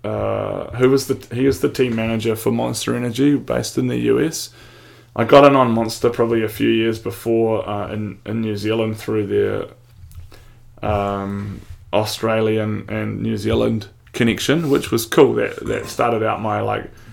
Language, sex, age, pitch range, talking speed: English, male, 20-39, 105-115 Hz, 170 wpm